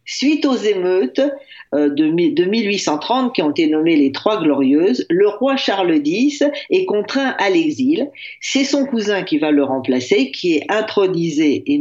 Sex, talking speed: female, 165 wpm